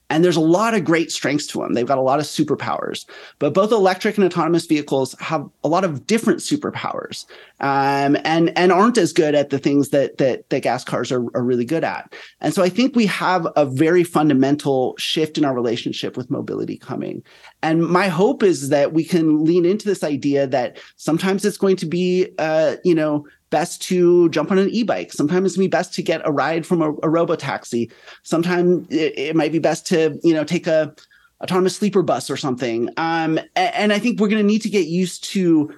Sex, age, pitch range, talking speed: male, 30-49, 145-185 Hz, 215 wpm